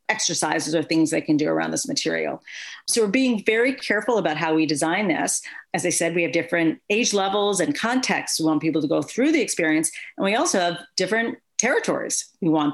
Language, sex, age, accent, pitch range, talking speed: English, female, 40-59, American, 160-215 Hz, 210 wpm